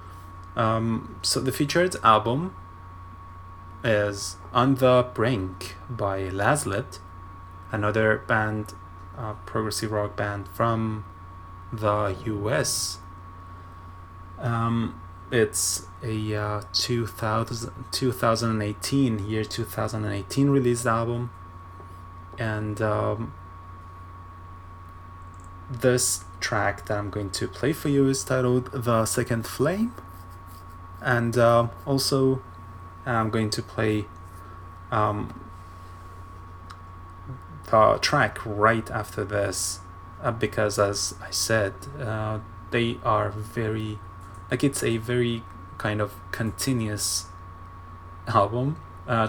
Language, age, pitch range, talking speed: English, 20-39, 95-115 Hz, 95 wpm